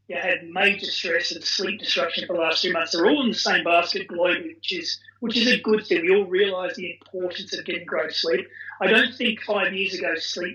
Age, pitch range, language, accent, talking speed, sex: 30-49, 180-225 Hz, English, Australian, 240 wpm, male